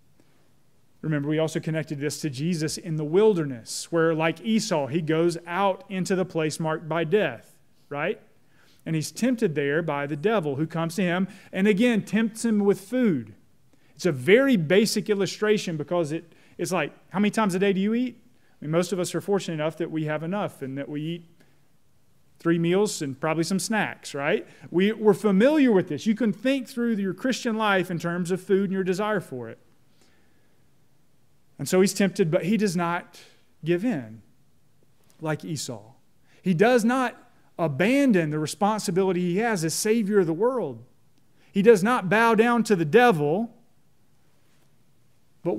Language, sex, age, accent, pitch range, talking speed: English, male, 30-49, American, 155-205 Hz, 175 wpm